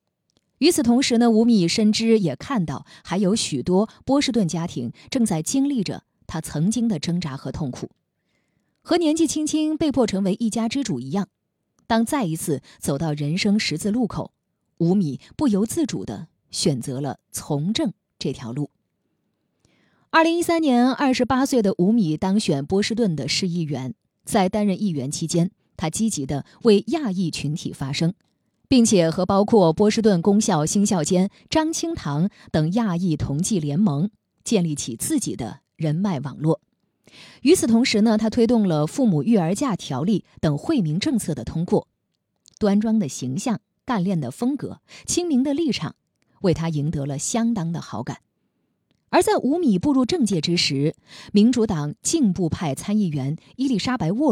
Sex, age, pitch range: female, 20-39, 160-235 Hz